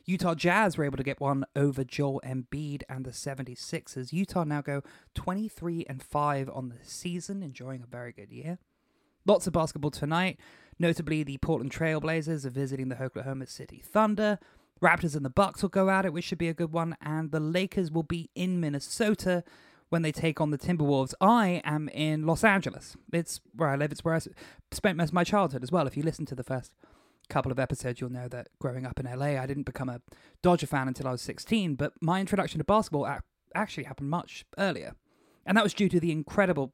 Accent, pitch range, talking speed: British, 130-170 Hz, 210 wpm